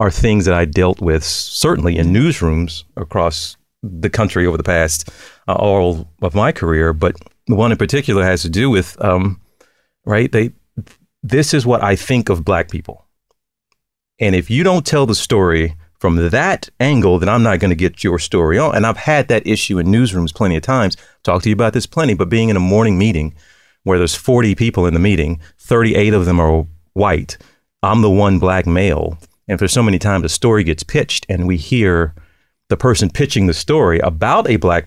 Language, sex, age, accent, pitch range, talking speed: English, male, 40-59, American, 85-115 Hz, 200 wpm